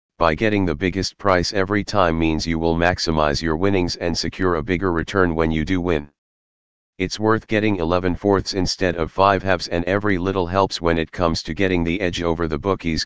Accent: American